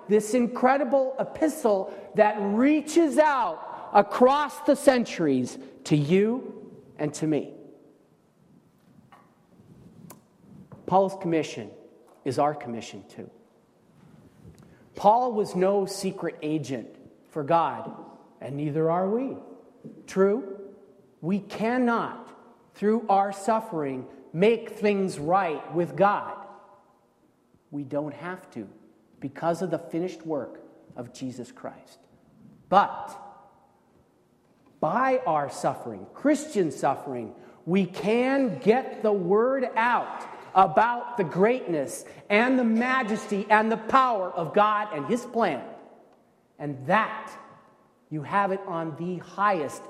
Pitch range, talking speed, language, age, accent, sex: 155-225 Hz, 105 wpm, English, 40-59, American, male